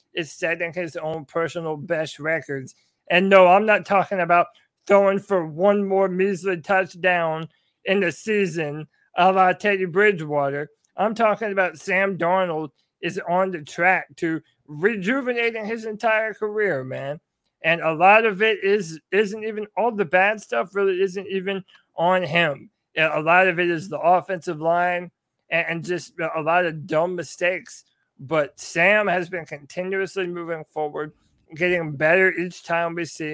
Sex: male